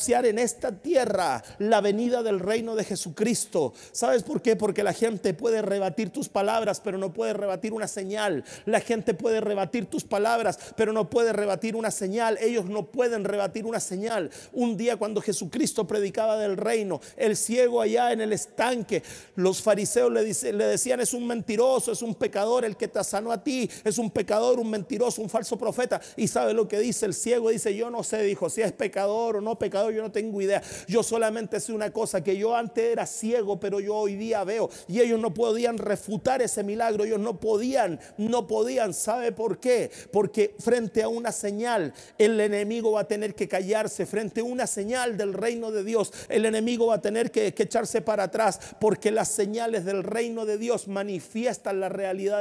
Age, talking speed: 40-59, 200 wpm